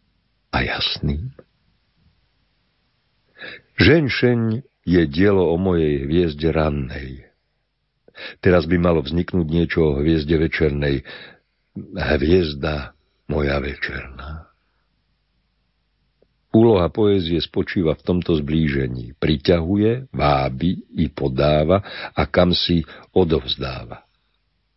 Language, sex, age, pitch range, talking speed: Slovak, male, 60-79, 70-90 Hz, 80 wpm